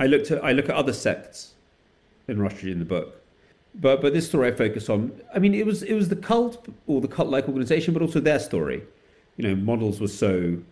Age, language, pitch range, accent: 40-59, English, 90-135 Hz, British